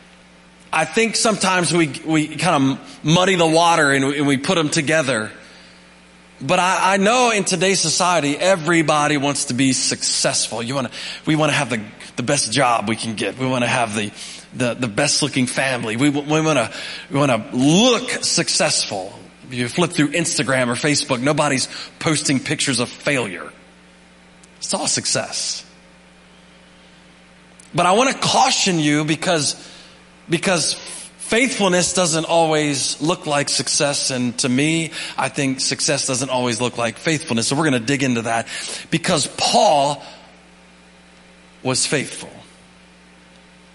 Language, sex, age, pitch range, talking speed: English, male, 30-49, 105-160 Hz, 150 wpm